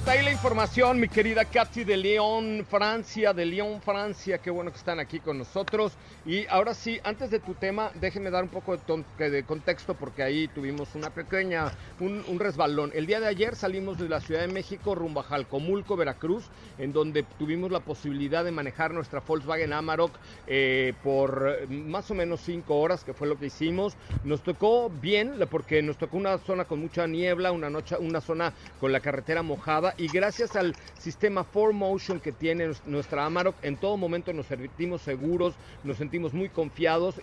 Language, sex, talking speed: Spanish, male, 185 wpm